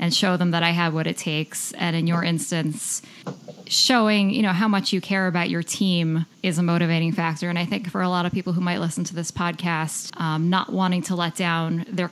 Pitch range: 170-200 Hz